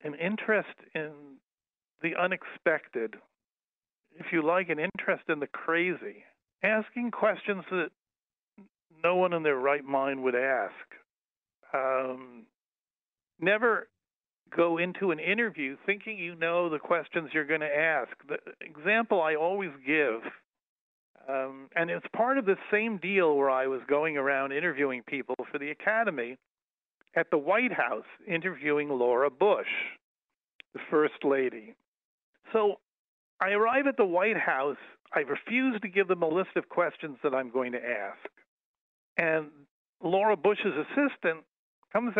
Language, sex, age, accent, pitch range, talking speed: Hebrew, male, 50-69, American, 150-210 Hz, 140 wpm